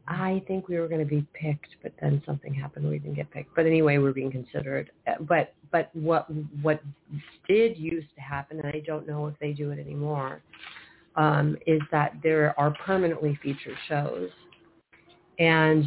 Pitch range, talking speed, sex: 145-155 Hz, 180 wpm, female